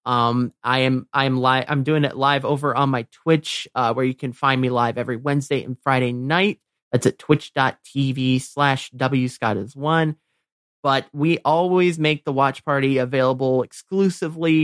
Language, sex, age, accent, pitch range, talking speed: English, male, 30-49, American, 130-170 Hz, 175 wpm